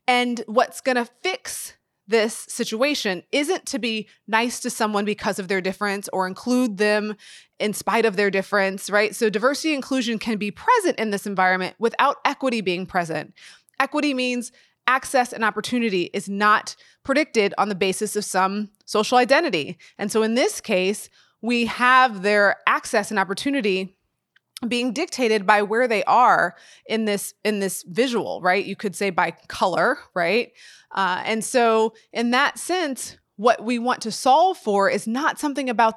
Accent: American